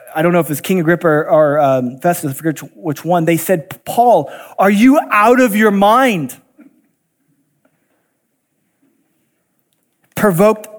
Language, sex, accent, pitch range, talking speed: English, male, American, 150-235 Hz, 145 wpm